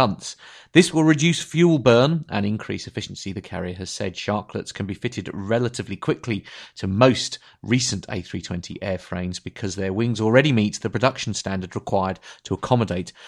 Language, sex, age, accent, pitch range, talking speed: English, male, 30-49, British, 95-115 Hz, 155 wpm